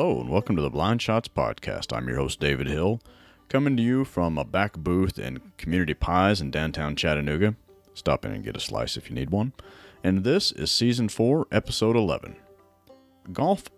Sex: male